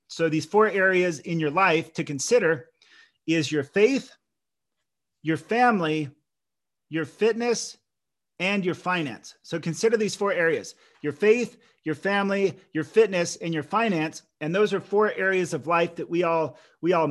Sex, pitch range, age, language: male, 155-195 Hz, 40-59, English